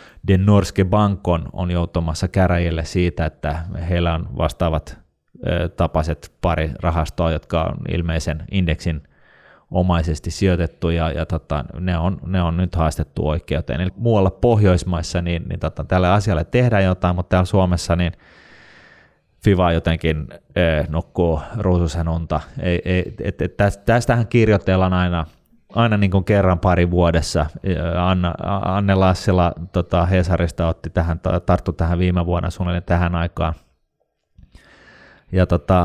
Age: 30-49